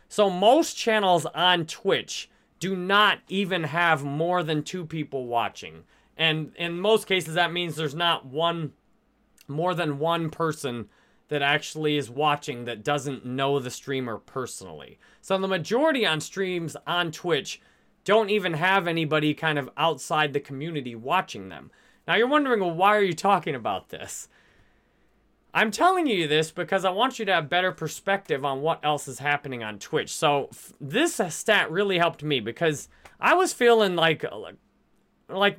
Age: 30-49